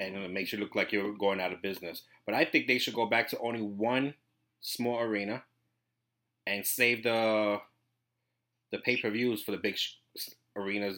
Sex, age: male, 30-49